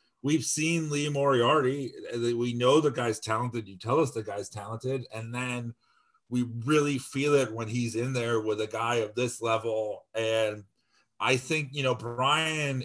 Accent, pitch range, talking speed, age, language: American, 110-135 Hz, 175 wpm, 40-59, English